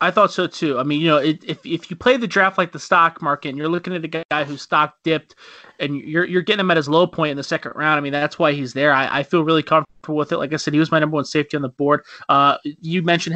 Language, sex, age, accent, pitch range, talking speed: English, male, 30-49, American, 145-170 Hz, 305 wpm